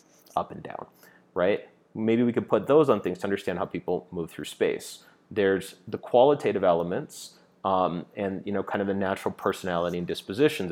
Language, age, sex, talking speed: English, 30-49, male, 185 wpm